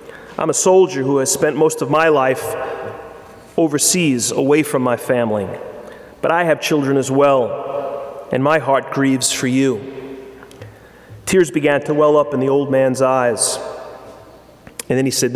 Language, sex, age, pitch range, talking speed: English, male, 30-49, 135-165 Hz, 160 wpm